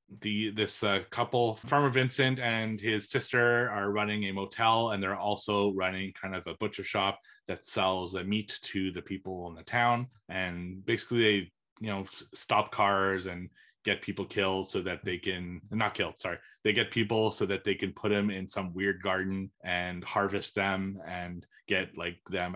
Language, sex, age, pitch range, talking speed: English, male, 30-49, 90-105 Hz, 190 wpm